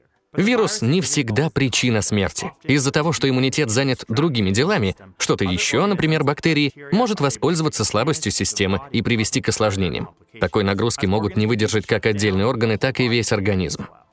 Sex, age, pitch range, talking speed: male, 20-39, 105-140 Hz, 155 wpm